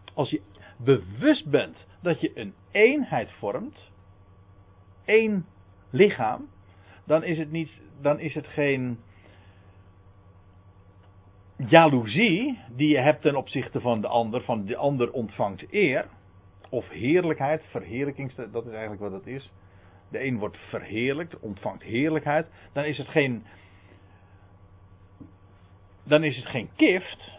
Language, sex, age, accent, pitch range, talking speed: Dutch, male, 50-69, Dutch, 95-135 Hz, 115 wpm